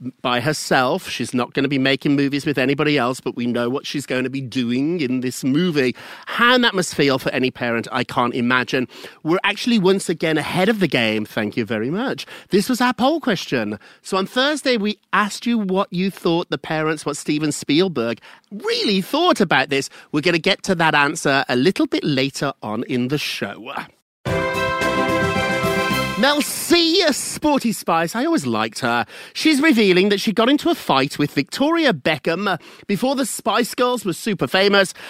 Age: 40-59